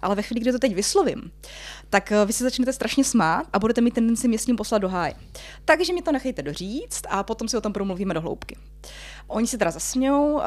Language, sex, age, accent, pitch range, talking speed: Czech, female, 20-39, native, 195-235 Hz, 225 wpm